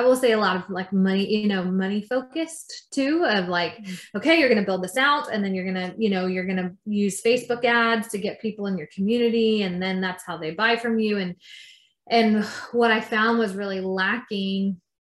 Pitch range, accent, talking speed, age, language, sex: 185-225 Hz, American, 225 wpm, 20-39, English, female